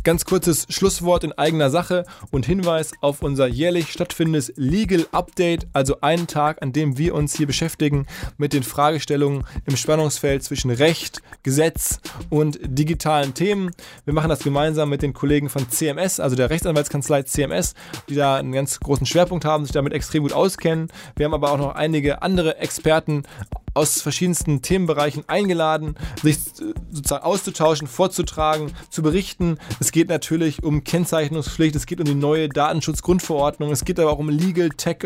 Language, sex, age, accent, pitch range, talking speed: German, male, 20-39, German, 145-175 Hz, 165 wpm